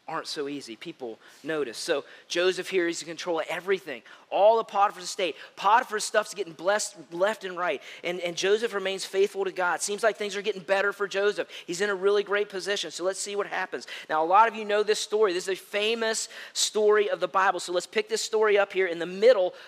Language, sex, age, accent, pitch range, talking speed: English, male, 40-59, American, 195-240 Hz, 230 wpm